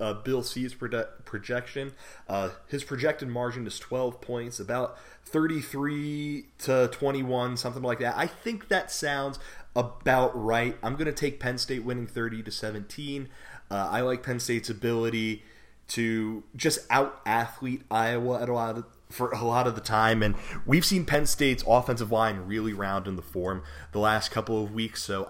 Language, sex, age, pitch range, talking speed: English, male, 30-49, 105-135 Hz, 160 wpm